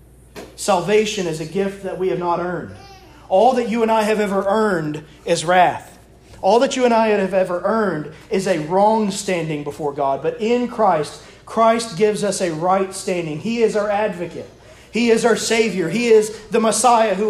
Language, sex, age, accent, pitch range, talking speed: English, male, 30-49, American, 155-215 Hz, 190 wpm